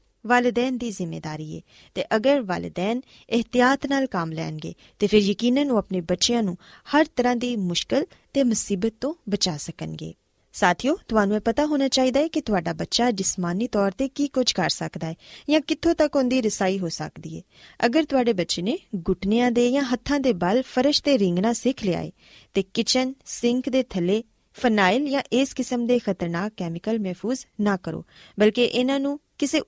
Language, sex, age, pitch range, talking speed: Punjabi, female, 20-39, 185-255 Hz, 160 wpm